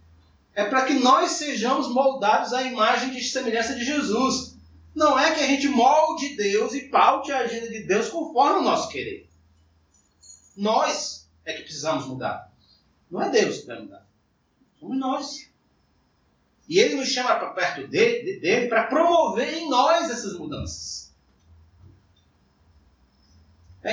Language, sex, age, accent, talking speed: Portuguese, male, 30-49, Brazilian, 145 wpm